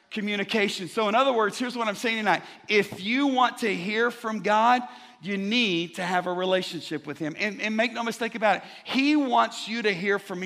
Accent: American